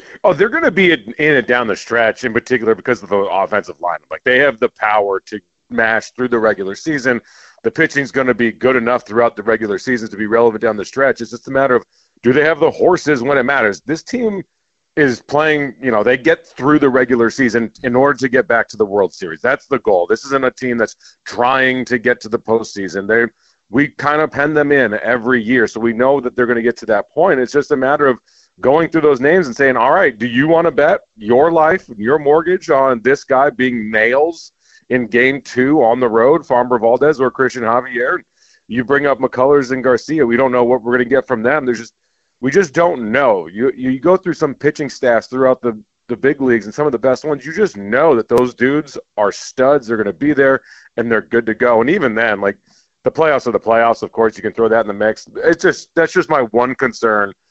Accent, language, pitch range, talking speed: American, English, 115-145 Hz, 245 wpm